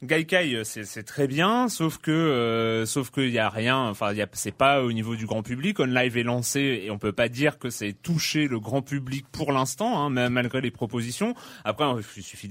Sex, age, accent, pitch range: male, 30-49, French, 120-160 Hz